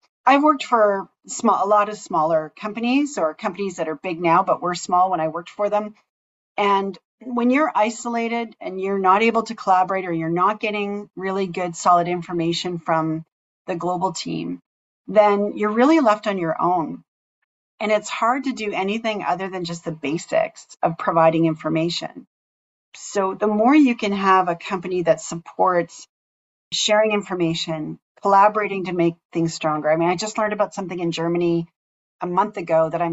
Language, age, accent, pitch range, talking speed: English, 40-59, American, 165-210 Hz, 175 wpm